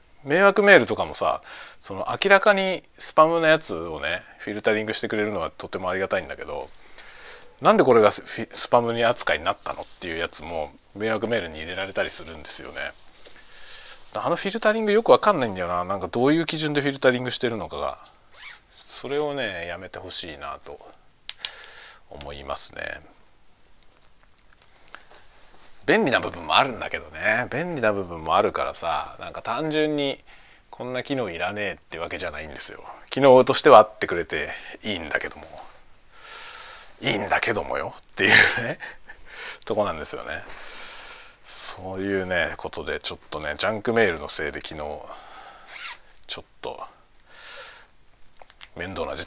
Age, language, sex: 40-59, Japanese, male